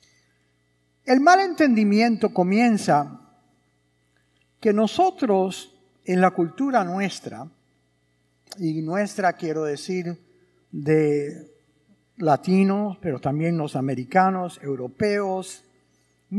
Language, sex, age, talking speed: English, male, 50-69, 75 wpm